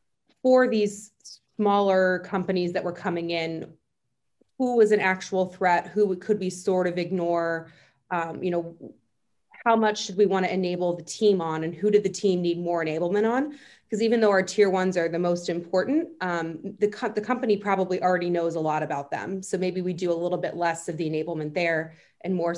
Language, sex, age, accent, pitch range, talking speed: English, female, 20-39, American, 170-205 Hz, 205 wpm